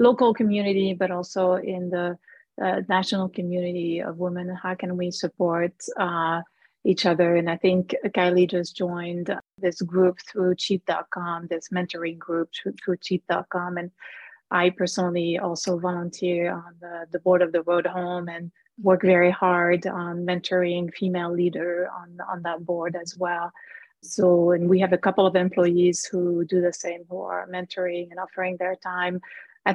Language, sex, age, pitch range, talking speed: English, female, 30-49, 175-190 Hz, 160 wpm